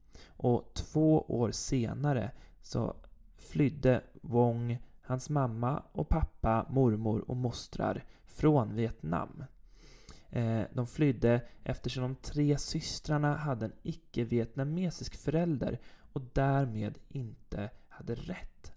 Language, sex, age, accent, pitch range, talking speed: Swedish, male, 20-39, native, 110-140 Hz, 95 wpm